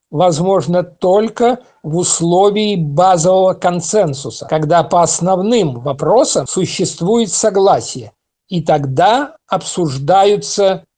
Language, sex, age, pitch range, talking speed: Russian, male, 50-69, 170-225 Hz, 80 wpm